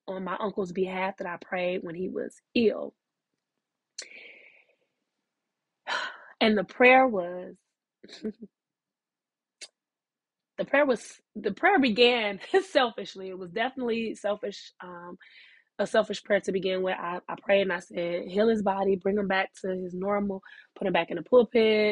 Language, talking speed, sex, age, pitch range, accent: English, 150 wpm, female, 20-39, 190-230 Hz, American